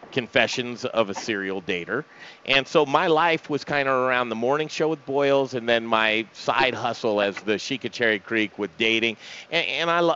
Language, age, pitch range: English, 40-59, 115-145 Hz